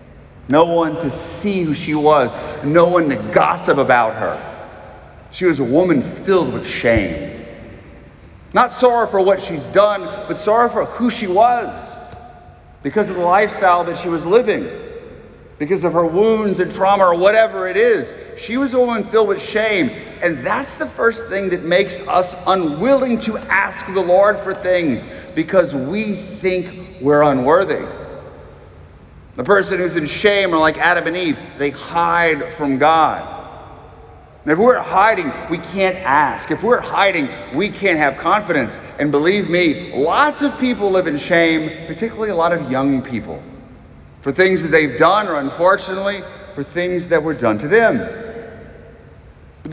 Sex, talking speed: male, 160 wpm